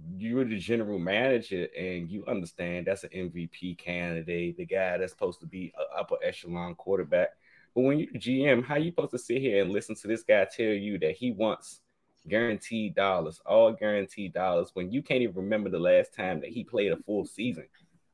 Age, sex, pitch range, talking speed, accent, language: 20-39, male, 95-160 Hz, 200 wpm, American, English